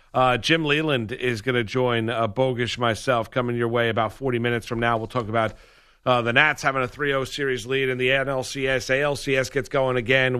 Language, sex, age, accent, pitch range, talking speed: English, male, 40-59, American, 120-145 Hz, 215 wpm